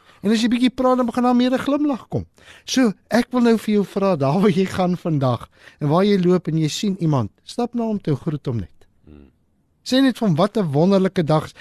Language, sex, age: English, male, 50-69